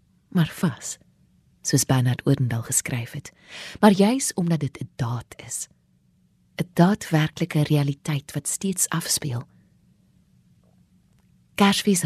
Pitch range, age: 145-195 Hz, 30-49